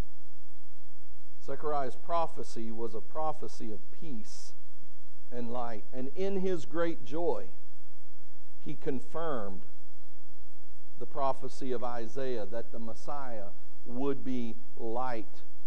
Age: 50-69